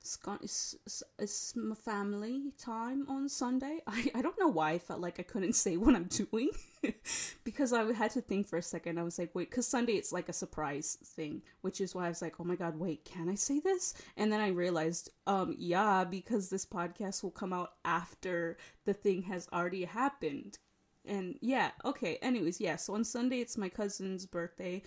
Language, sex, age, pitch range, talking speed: English, female, 20-39, 175-230 Hz, 205 wpm